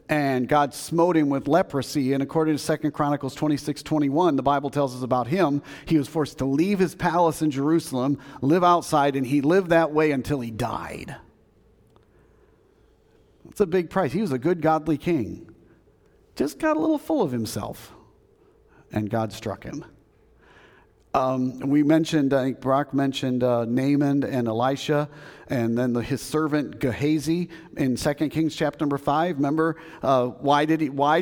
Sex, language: male, English